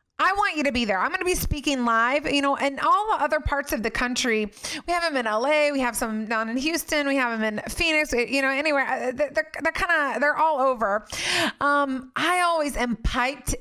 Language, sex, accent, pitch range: English, female, American, 230-295 Hz